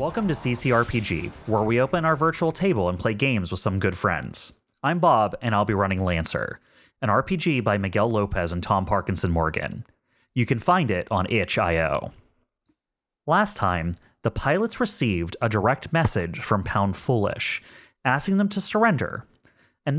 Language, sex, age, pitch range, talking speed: English, male, 30-49, 100-130 Hz, 160 wpm